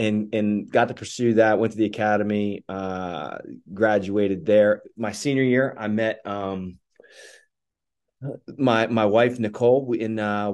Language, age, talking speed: English, 30-49, 140 wpm